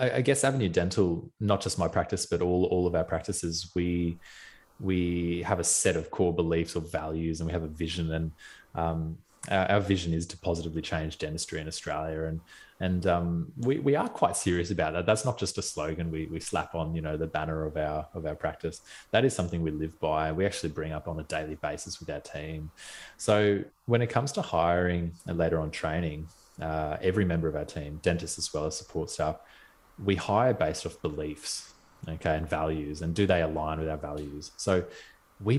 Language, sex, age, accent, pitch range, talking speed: English, male, 20-39, Australian, 80-90 Hz, 210 wpm